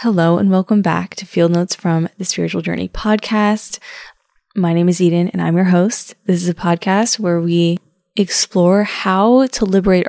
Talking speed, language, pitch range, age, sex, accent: 180 wpm, English, 170-205 Hz, 10-29, female, American